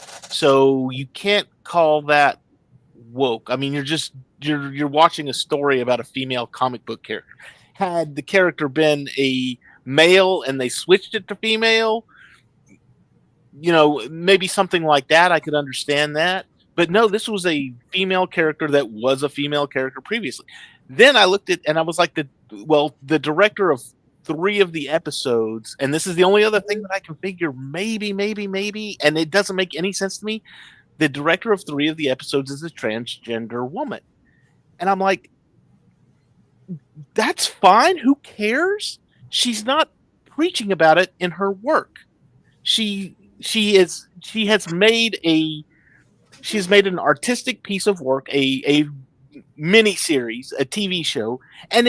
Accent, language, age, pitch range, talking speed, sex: American, English, 40-59, 140-205 Hz, 165 wpm, male